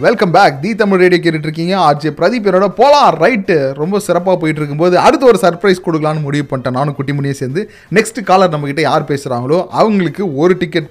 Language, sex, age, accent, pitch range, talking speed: Tamil, male, 30-49, native, 150-200 Hz, 175 wpm